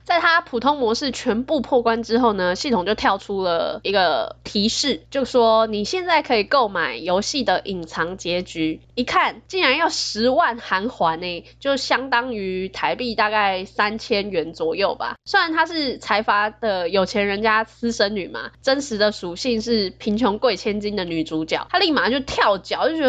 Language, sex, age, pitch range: Chinese, female, 10-29, 205-275 Hz